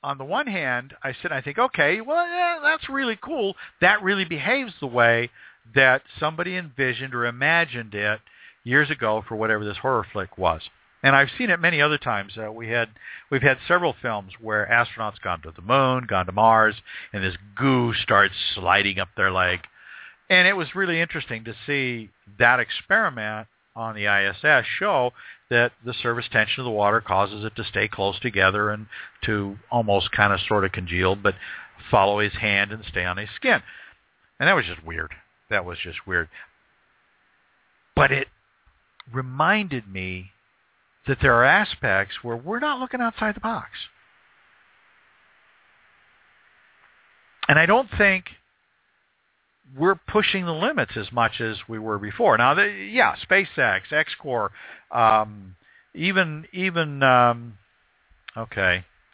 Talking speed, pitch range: 160 wpm, 105-155 Hz